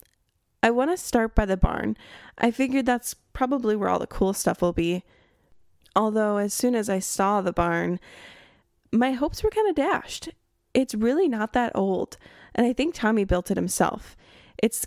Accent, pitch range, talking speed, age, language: American, 190-260 Hz, 180 wpm, 10-29, English